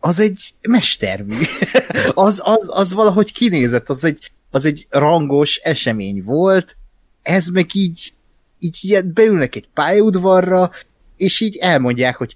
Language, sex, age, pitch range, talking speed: Hungarian, male, 30-49, 110-155 Hz, 125 wpm